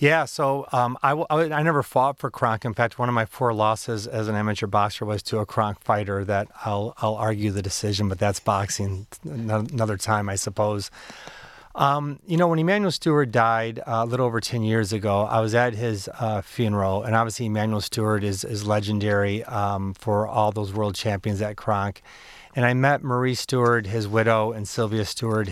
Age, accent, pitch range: 30-49, American, 105-120 Hz